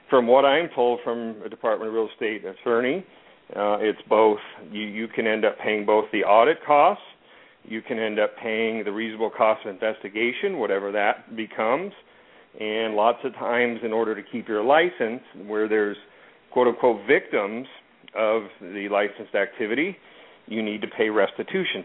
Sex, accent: male, American